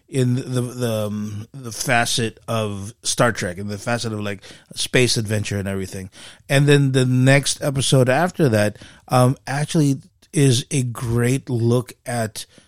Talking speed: 150 wpm